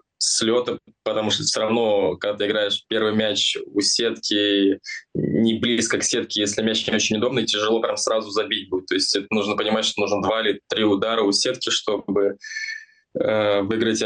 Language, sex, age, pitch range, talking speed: Russian, male, 20-39, 105-115 Hz, 180 wpm